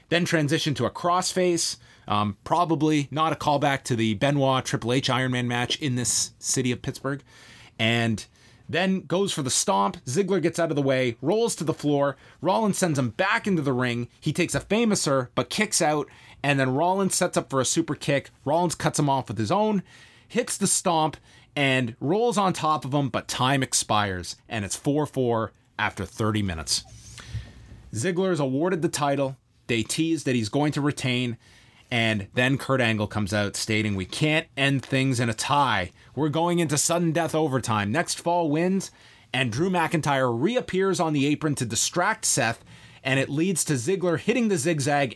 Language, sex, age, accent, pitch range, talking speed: English, male, 30-49, American, 120-160 Hz, 180 wpm